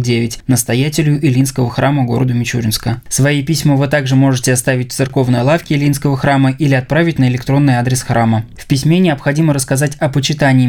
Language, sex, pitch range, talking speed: Russian, male, 125-145 Hz, 165 wpm